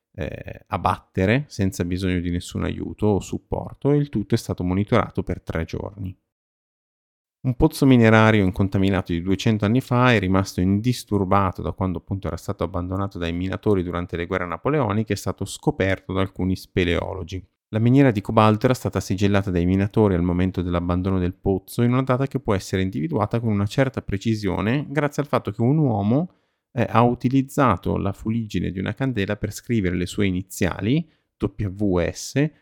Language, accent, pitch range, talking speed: Italian, native, 95-115 Hz, 170 wpm